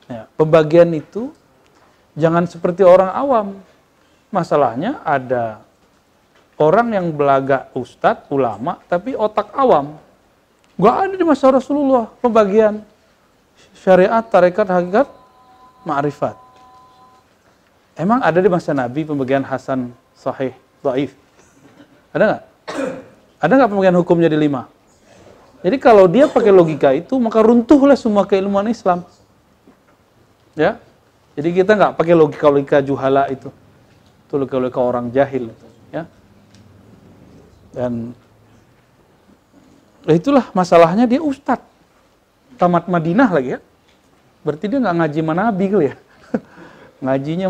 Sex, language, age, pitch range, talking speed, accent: male, Indonesian, 40-59, 135-220 Hz, 110 wpm, native